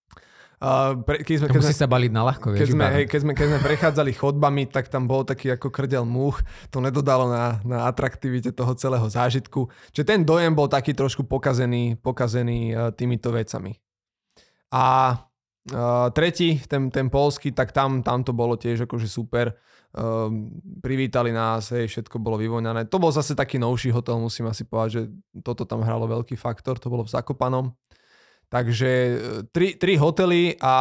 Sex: male